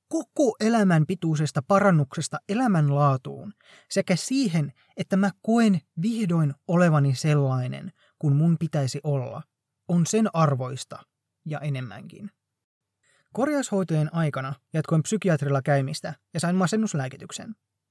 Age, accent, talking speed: 20-39, native, 100 wpm